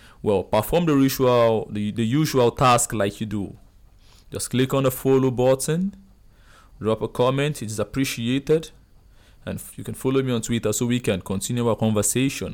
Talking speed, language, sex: 170 wpm, English, male